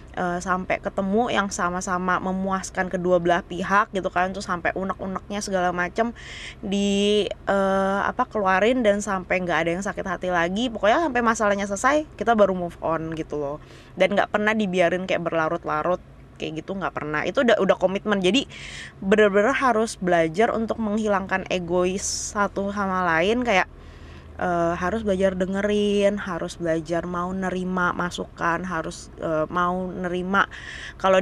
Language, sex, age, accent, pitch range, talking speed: Indonesian, female, 20-39, native, 170-205 Hz, 150 wpm